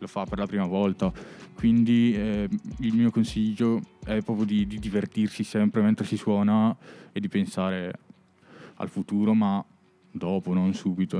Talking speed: 155 wpm